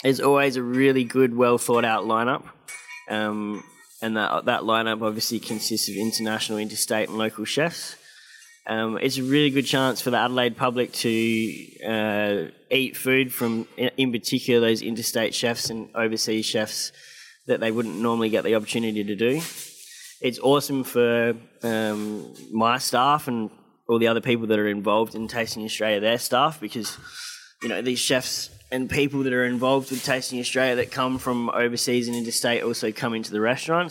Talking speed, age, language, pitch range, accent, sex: 170 wpm, 20-39, English, 110-135 Hz, Australian, male